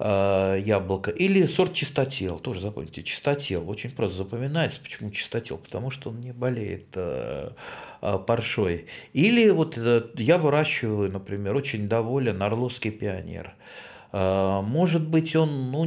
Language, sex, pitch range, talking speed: Russian, male, 105-155 Hz, 130 wpm